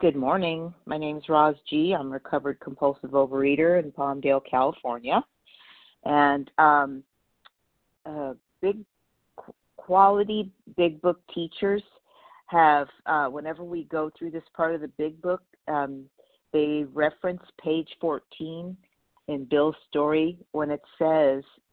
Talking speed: 125 wpm